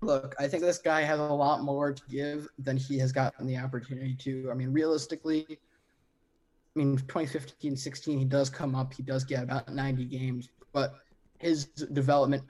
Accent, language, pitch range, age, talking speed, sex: American, English, 135-145 Hz, 20-39, 180 wpm, male